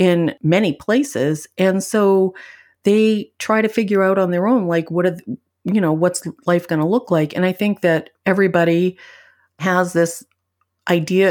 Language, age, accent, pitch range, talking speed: English, 40-59, American, 160-195 Hz, 175 wpm